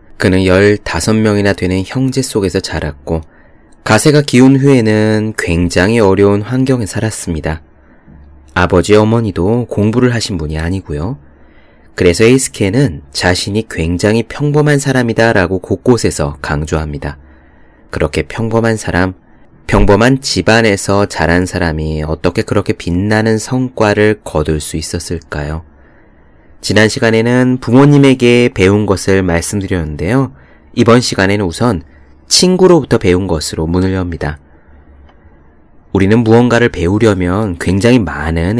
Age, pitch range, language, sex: 30-49, 80-115 Hz, Korean, male